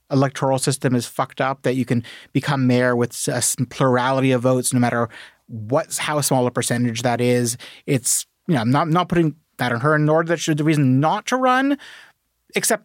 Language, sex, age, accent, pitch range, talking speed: English, male, 30-49, American, 120-155 Hz, 205 wpm